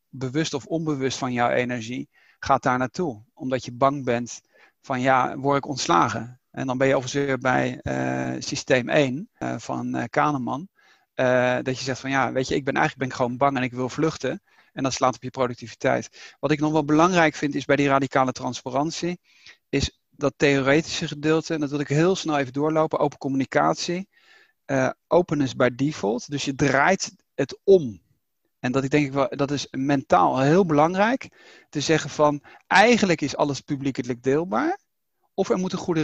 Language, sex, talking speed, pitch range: Dutch, male, 180 wpm, 135-170 Hz